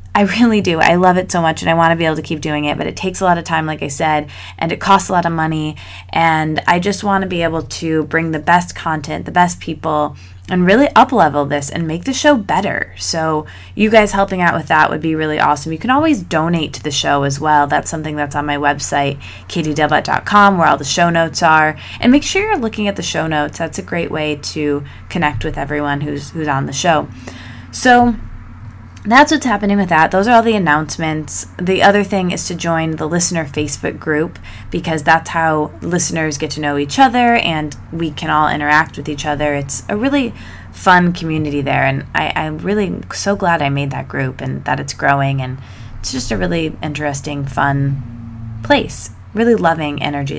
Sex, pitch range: female, 145-180 Hz